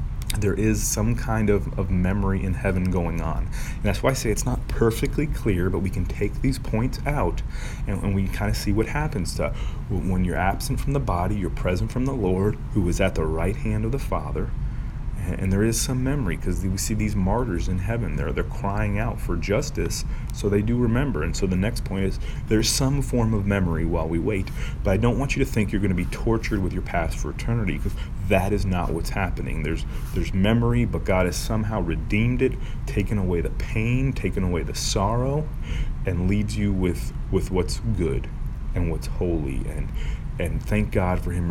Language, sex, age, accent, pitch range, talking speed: English, male, 30-49, American, 90-115 Hz, 215 wpm